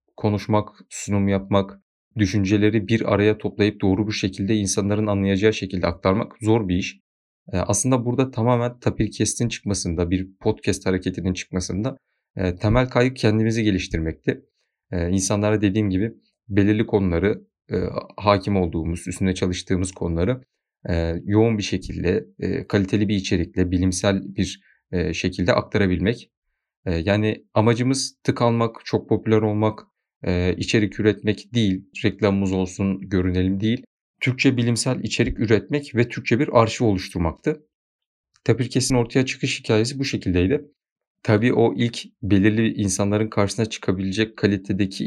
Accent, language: native, Turkish